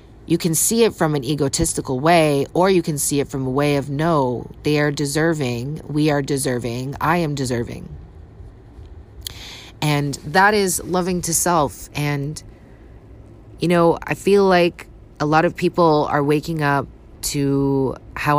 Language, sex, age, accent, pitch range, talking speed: English, female, 30-49, American, 125-150 Hz, 155 wpm